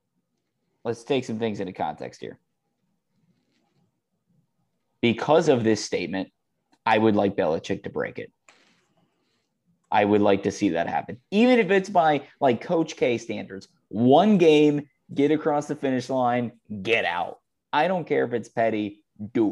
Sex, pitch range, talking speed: male, 105-155 Hz, 150 wpm